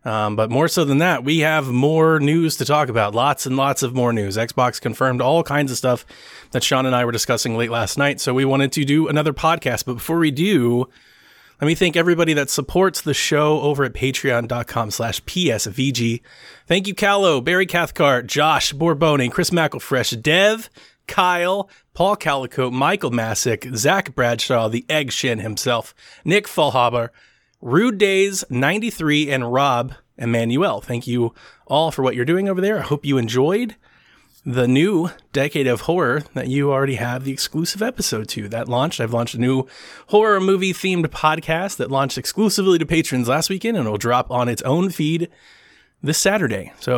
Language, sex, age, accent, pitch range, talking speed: English, male, 30-49, American, 120-160 Hz, 180 wpm